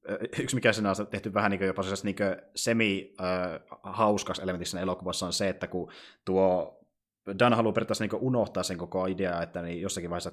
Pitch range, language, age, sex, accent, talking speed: 90-110 Hz, Finnish, 20-39, male, native, 200 wpm